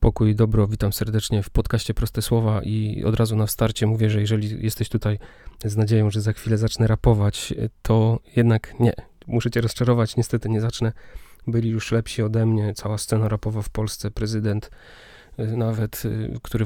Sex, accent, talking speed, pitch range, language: male, native, 165 wpm, 110-115 Hz, Polish